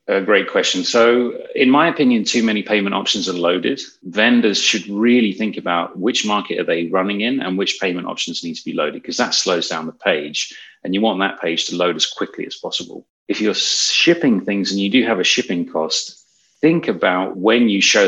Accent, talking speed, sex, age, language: British, 215 wpm, male, 30-49, English